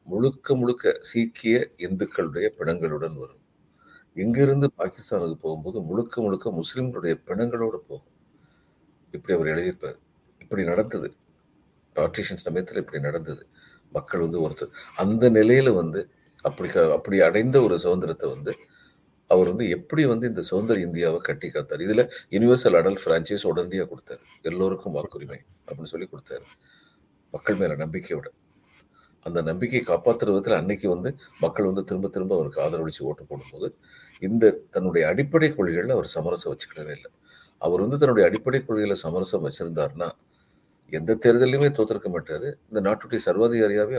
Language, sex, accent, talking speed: Tamil, male, native, 125 wpm